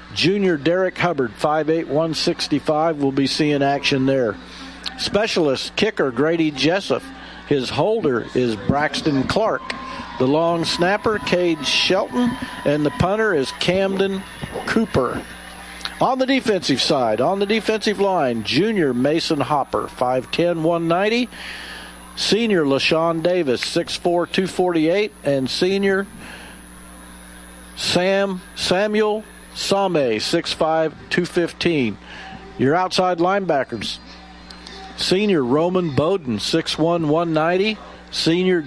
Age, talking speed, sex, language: 50-69, 100 wpm, male, English